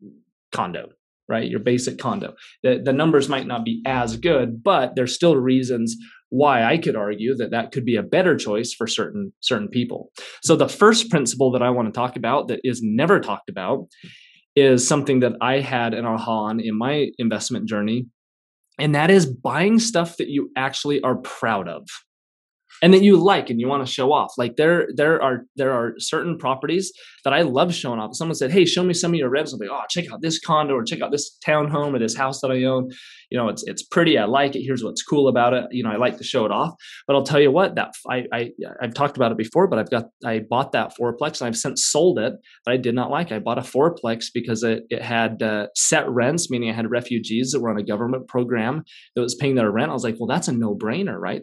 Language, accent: English, American